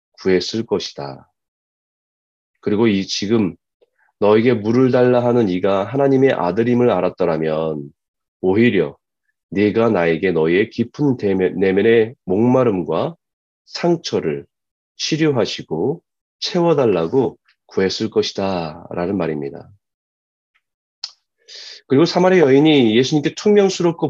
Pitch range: 95-135 Hz